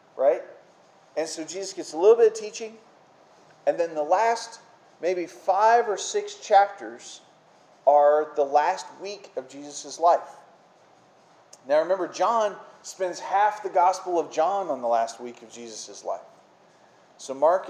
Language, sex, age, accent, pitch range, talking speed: English, male, 40-59, American, 140-210 Hz, 150 wpm